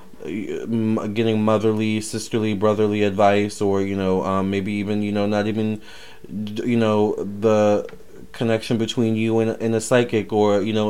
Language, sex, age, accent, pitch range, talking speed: English, male, 20-39, American, 100-120 Hz, 155 wpm